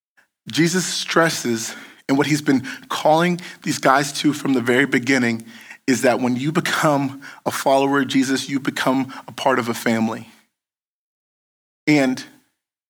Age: 40-59